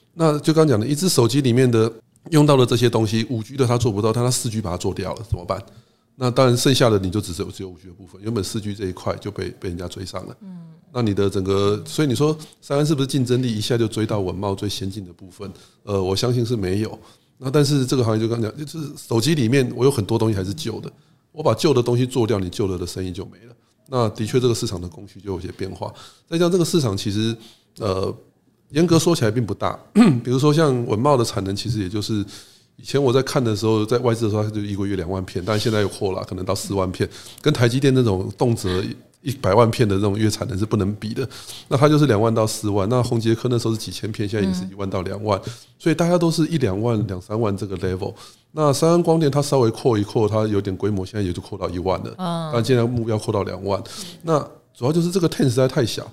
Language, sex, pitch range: Chinese, male, 100-130 Hz